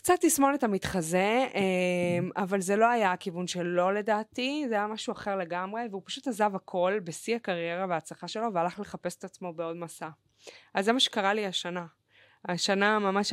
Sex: female